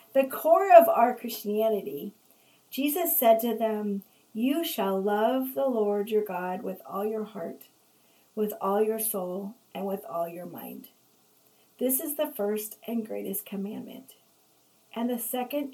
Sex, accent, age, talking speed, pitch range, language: female, American, 40-59, 150 wpm, 195-240 Hz, English